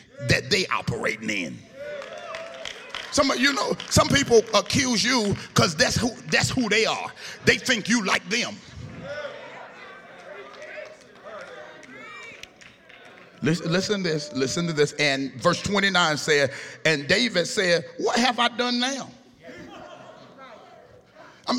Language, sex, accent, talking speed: English, male, American, 120 wpm